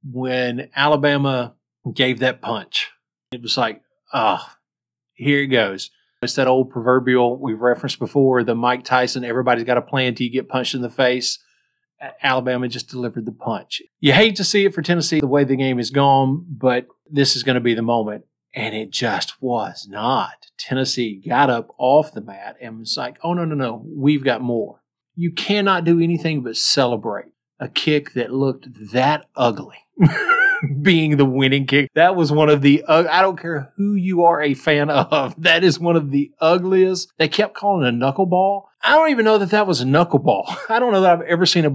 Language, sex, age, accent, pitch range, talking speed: English, male, 40-59, American, 125-170 Hz, 200 wpm